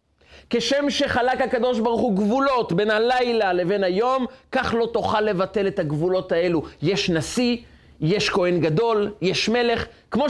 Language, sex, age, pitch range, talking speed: Hebrew, male, 30-49, 145-215 Hz, 145 wpm